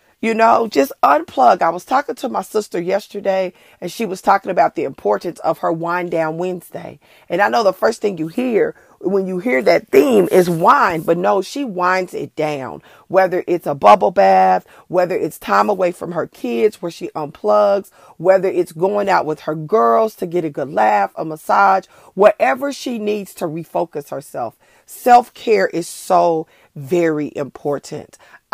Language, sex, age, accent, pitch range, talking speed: English, female, 40-59, American, 170-225 Hz, 175 wpm